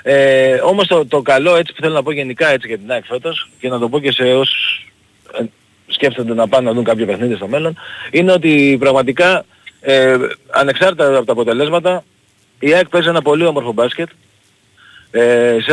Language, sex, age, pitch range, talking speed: Greek, male, 40-59, 125-175 Hz, 175 wpm